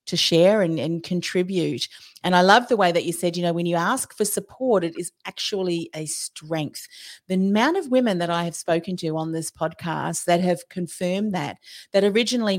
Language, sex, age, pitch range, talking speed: English, female, 40-59, 165-205 Hz, 205 wpm